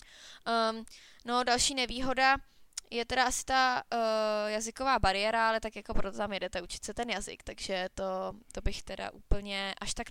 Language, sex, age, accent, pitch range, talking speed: Czech, female, 20-39, native, 200-230 Hz, 170 wpm